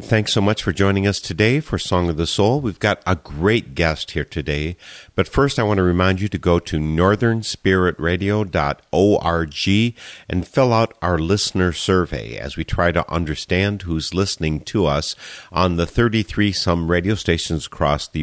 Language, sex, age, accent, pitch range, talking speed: English, male, 50-69, American, 80-100 Hz, 175 wpm